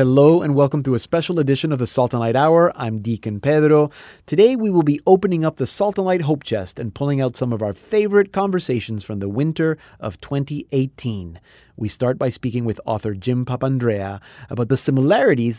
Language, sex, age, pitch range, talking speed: English, male, 30-49, 115-145 Hz, 200 wpm